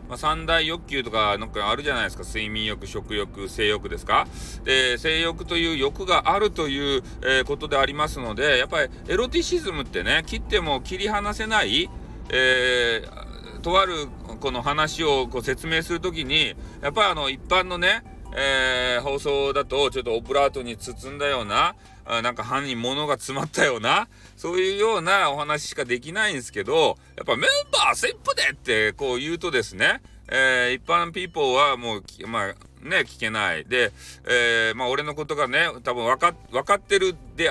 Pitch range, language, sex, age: 130-195 Hz, Japanese, male, 40-59